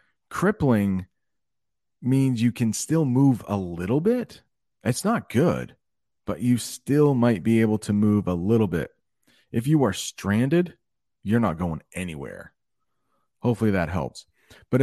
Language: English